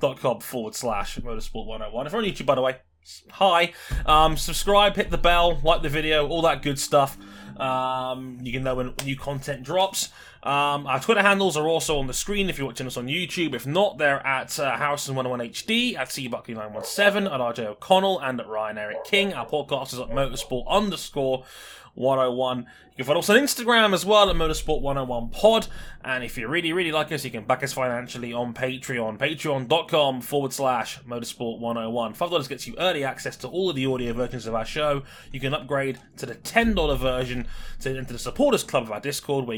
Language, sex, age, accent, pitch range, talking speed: English, male, 20-39, British, 120-160 Hz, 215 wpm